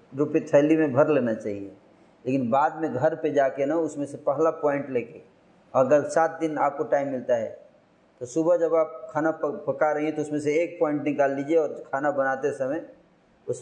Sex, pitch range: male, 130-160 Hz